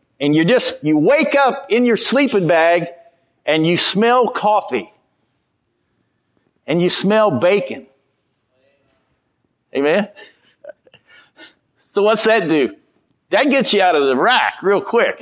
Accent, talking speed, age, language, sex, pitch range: American, 125 wpm, 50-69, English, male, 185-275 Hz